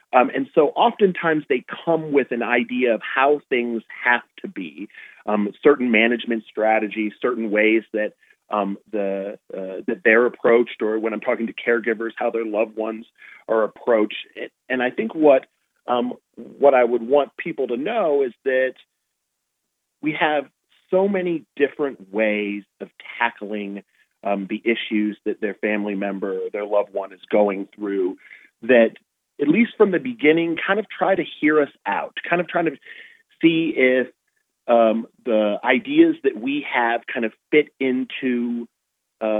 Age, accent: 40-59, American